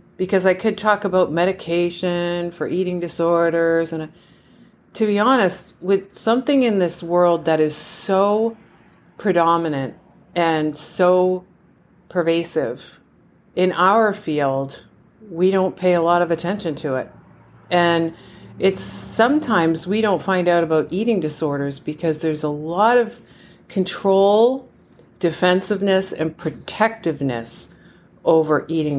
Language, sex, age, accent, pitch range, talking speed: English, female, 50-69, American, 150-185 Hz, 120 wpm